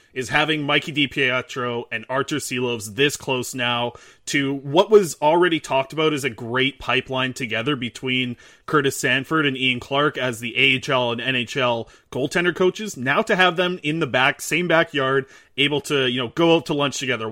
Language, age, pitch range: English, 30-49, 130-160 Hz